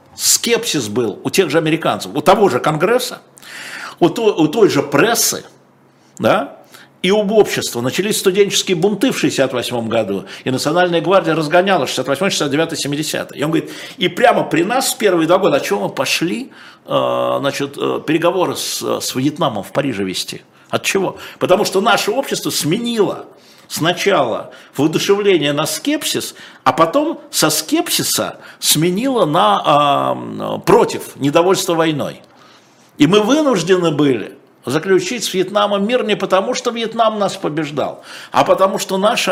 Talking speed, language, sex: 140 wpm, Russian, male